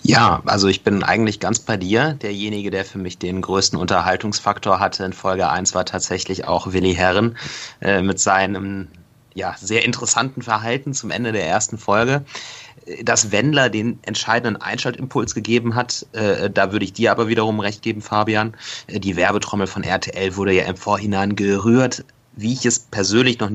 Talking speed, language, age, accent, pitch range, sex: 165 wpm, German, 30-49, German, 95-115 Hz, male